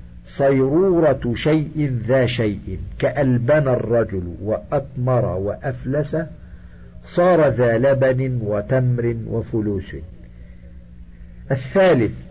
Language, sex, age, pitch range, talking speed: Arabic, male, 50-69, 90-135 Hz, 70 wpm